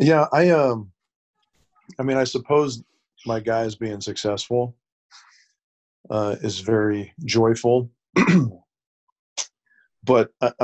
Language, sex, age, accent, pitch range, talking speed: English, male, 40-59, American, 100-125 Hz, 95 wpm